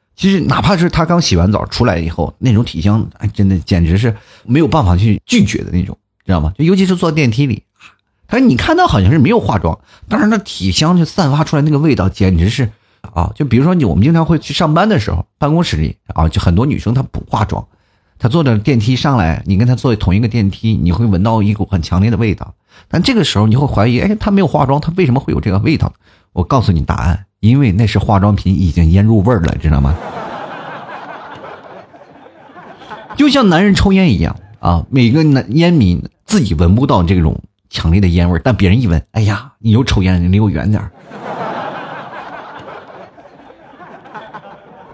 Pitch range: 95-150 Hz